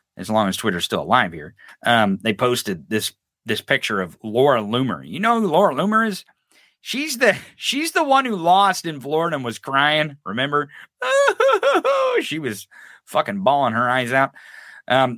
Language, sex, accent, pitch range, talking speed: English, male, American, 125-185 Hz, 175 wpm